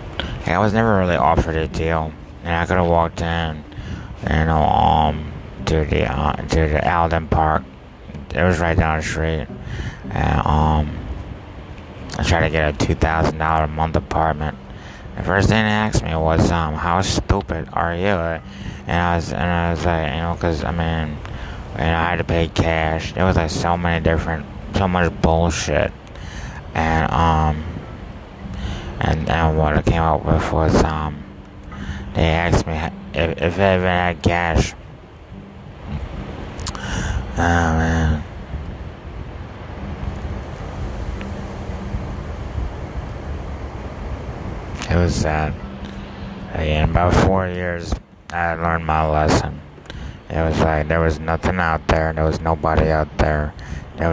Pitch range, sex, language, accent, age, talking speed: 80-90 Hz, male, English, American, 20-39, 145 wpm